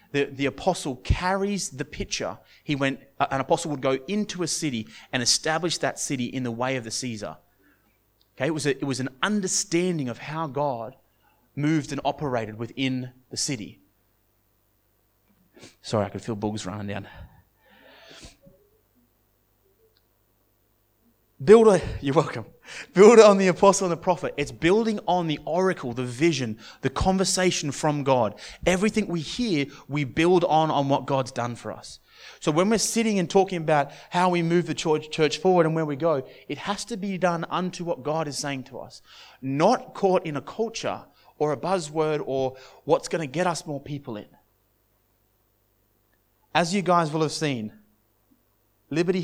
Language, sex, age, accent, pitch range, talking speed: English, male, 30-49, Australian, 115-170 Hz, 165 wpm